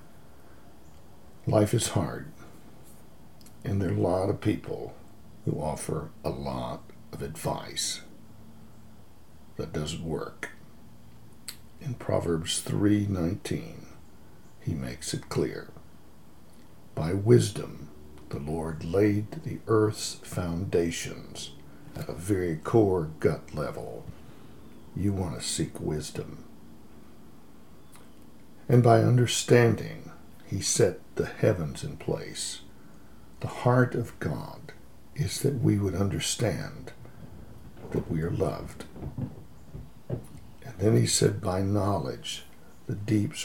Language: English